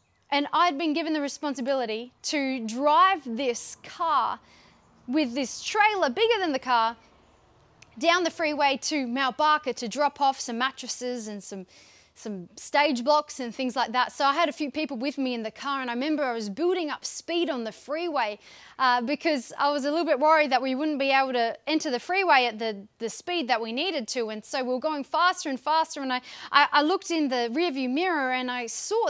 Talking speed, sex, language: 215 wpm, female, English